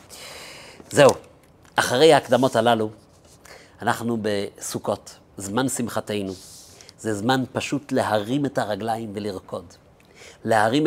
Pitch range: 105-130 Hz